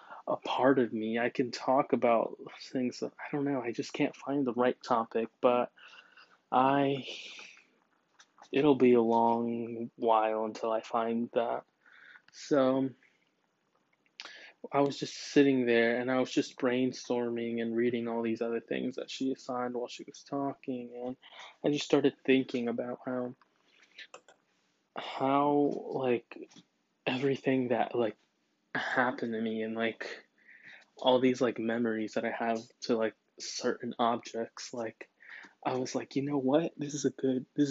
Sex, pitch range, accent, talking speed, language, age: male, 115-135 Hz, American, 150 wpm, English, 20-39